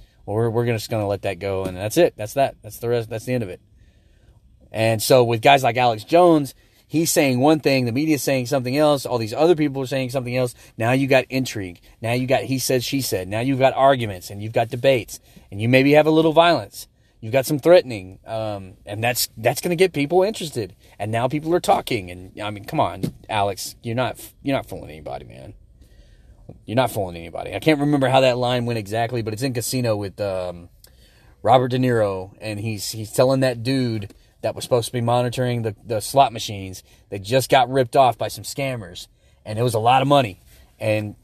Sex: male